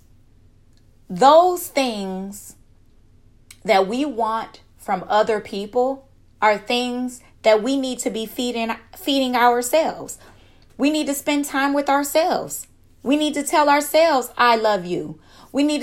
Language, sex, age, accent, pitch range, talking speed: English, female, 20-39, American, 155-260 Hz, 135 wpm